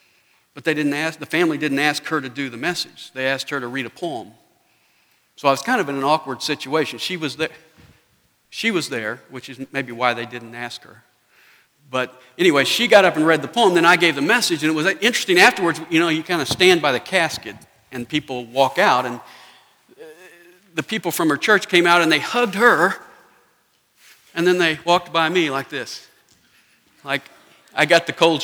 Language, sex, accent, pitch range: English, male, American, 135-180 Hz